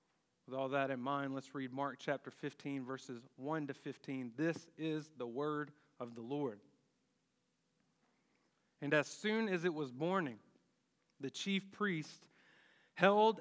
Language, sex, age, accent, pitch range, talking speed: English, male, 40-59, American, 145-200 Hz, 145 wpm